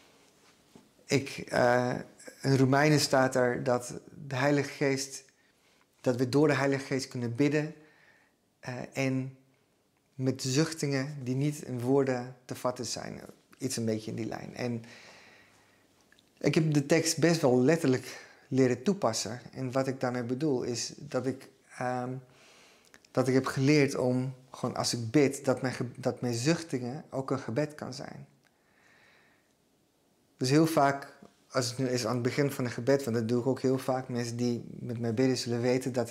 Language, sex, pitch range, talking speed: Dutch, male, 125-135 Hz, 170 wpm